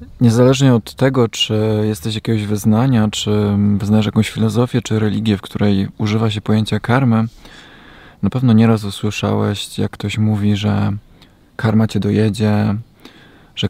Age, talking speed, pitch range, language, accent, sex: 20-39, 135 wpm, 105-115 Hz, Polish, native, male